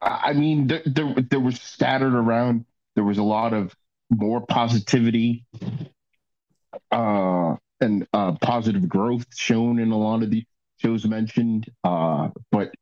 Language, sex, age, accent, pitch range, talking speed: English, male, 30-49, American, 100-120 Hz, 140 wpm